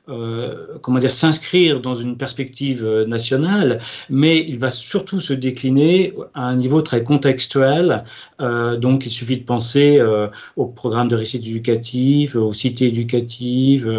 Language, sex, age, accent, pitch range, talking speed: French, male, 40-59, French, 120-145 Hz, 145 wpm